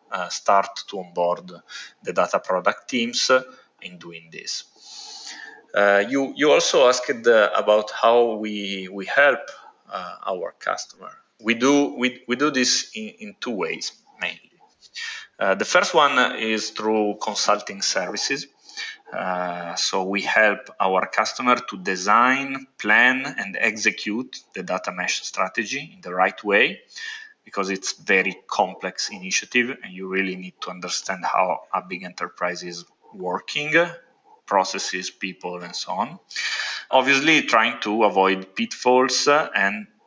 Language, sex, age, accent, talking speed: English, male, 30-49, Italian, 135 wpm